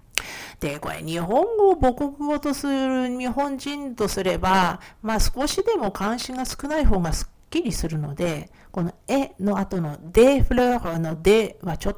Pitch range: 175-260 Hz